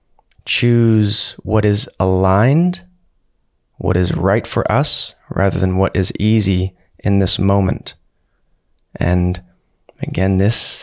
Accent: American